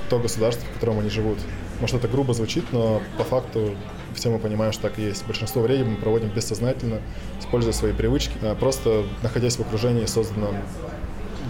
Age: 20-39